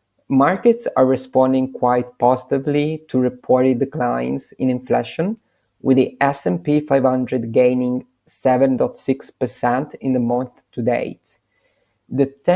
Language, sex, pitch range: English, male, 120-135 Hz